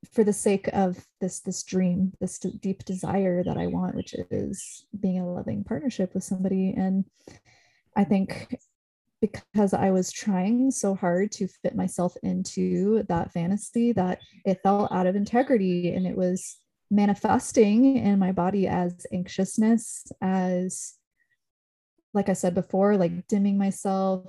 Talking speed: 145 wpm